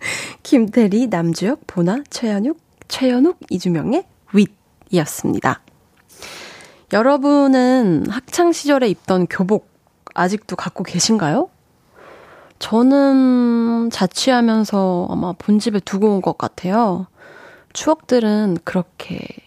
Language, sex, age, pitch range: Korean, female, 20-39, 180-260 Hz